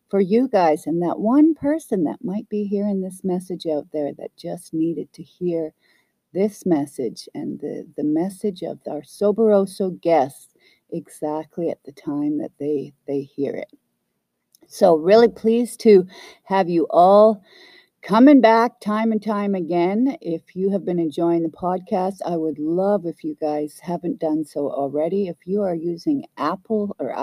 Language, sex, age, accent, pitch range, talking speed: English, female, 50-69, American, 170-220 Hz, 165 wpm